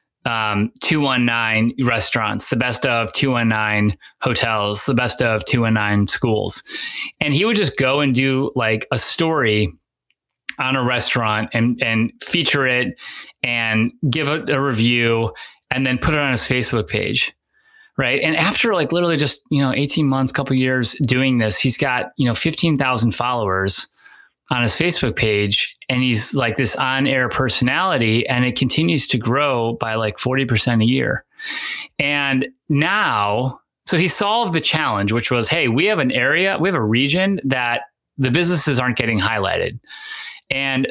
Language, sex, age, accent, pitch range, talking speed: English, male, 20-39, American, 115-145 Hz, 170 wpm